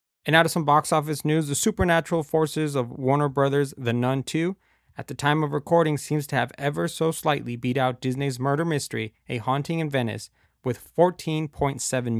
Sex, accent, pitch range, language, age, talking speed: male, American, 120-155 Hz, English, 30-49, 185 wpm